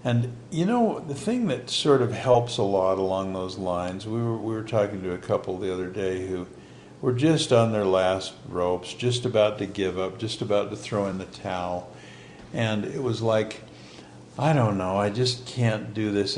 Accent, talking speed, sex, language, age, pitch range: American, 205 wpm, male, English, 60-79, 95-125 Hz